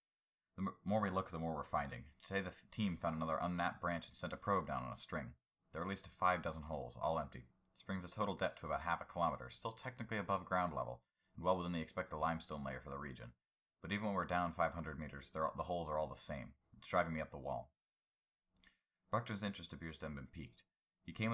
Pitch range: 75-90 Hz